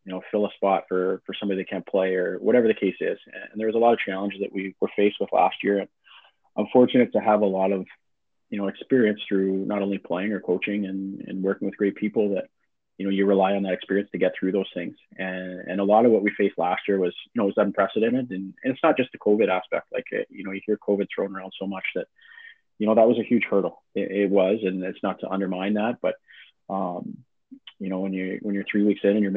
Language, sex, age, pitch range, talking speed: English, male, 20-39, 95-105 Hz, 265 wpm